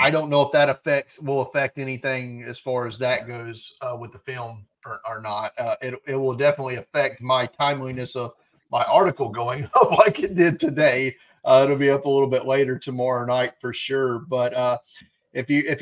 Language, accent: English, American